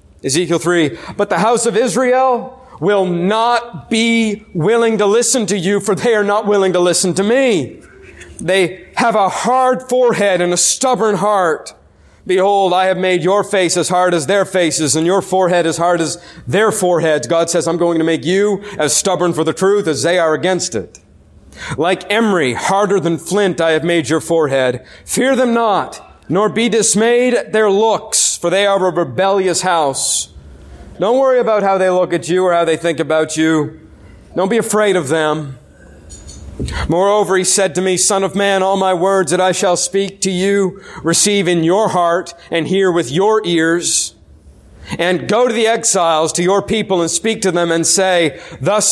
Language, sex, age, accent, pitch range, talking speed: English, male, 40-59, American, 170-205 Hz, 190 wpm